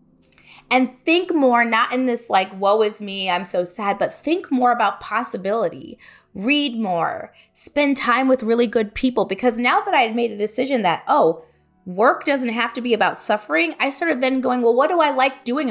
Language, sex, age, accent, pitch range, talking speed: English, female, 20-39, American, 210-270 Hz, 205 wpm